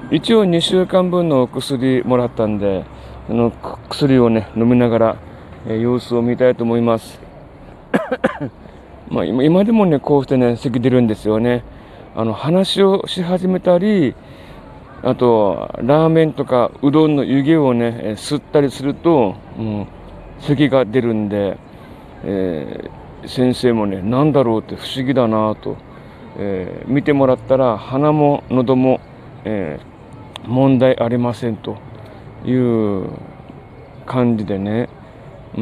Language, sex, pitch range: Japanese, male, 110-140 Hz